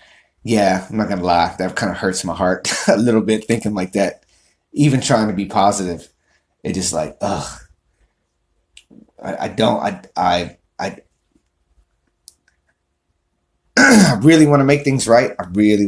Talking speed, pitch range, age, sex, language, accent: 155 wpm, 90-135 Hz, 30-49, male, English, American